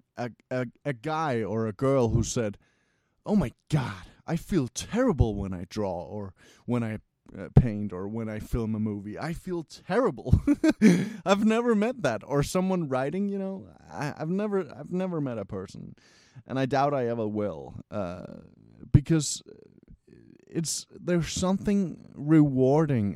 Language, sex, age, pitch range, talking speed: English, male, 30-49, 105-150 Hz, 160 wpm